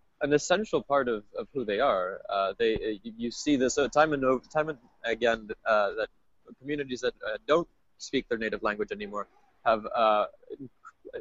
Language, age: English, 20-39